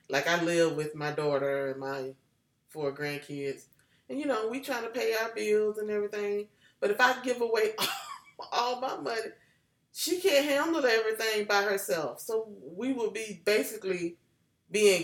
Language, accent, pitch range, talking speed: English, American, 185-250 Hz, 165 wpm